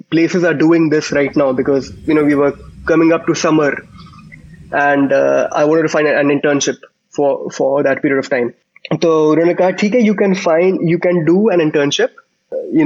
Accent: Indian